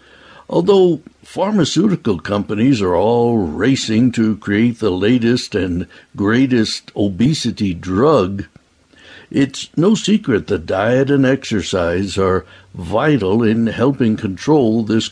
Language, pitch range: English, 100-135 Hz